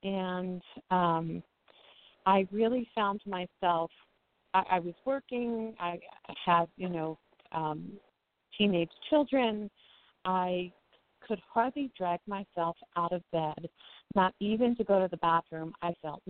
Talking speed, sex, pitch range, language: 125 wpm, female, 170-210 Hz, English